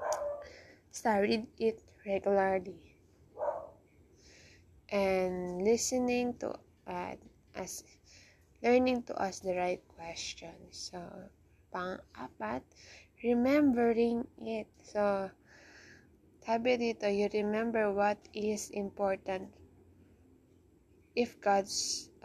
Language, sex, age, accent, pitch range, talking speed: Filipino, female, 20-39, native, 185-220 Hz, 80 wpm